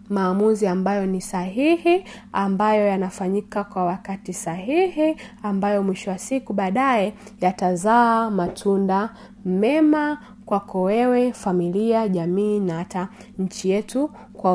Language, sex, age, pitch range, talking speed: Swahili, female, 20-39, 200-245 Hz, 105 wpm